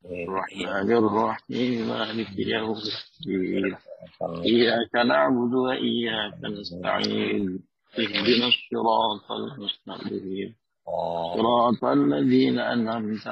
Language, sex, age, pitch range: Indonesian, male, 50-69, 105-120 Hz